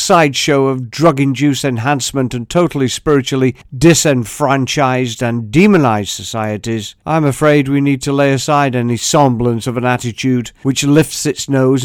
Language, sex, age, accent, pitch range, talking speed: English, male, 50-69, British, 120-145 Hz, 135 wpm